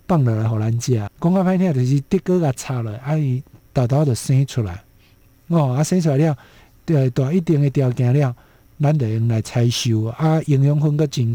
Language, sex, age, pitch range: Chinese, male, 50-69, 115-155 Hz